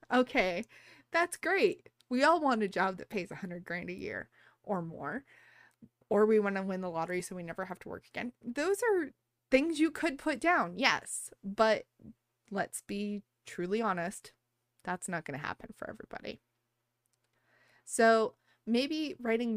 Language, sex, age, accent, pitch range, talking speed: English, female, 20-39, American, 170-225 Hz, 165 wpm